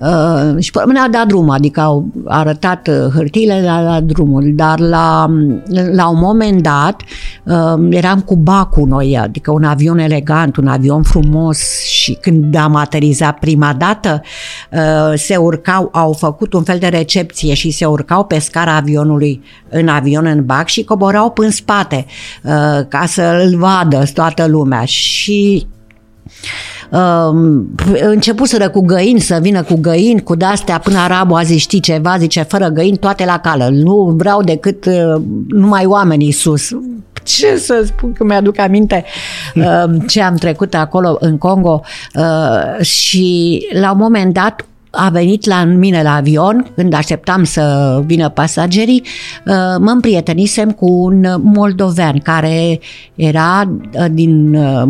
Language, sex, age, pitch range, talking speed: Romanian, female, 50-69, 150-190 Hz, 150 wpm